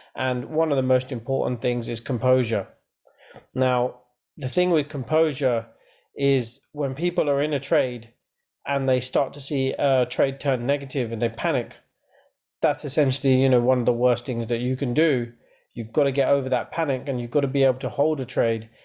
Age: 30-49